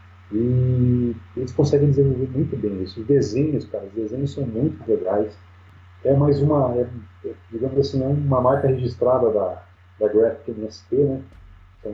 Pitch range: 95-125 Hz